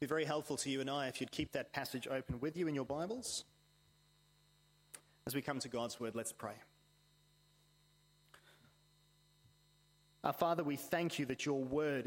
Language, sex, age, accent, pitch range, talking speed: English, male, 30-49, Australian, 135-155 Hz, 180 wpm